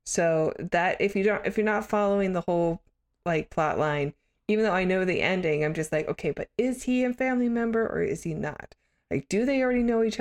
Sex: female